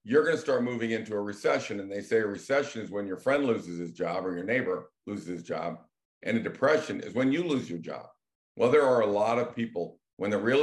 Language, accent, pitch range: English, American, 100-130 Hz